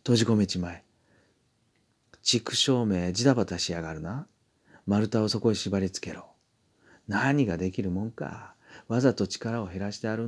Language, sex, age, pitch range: Japanese, male, 40-59, 95-115 Hz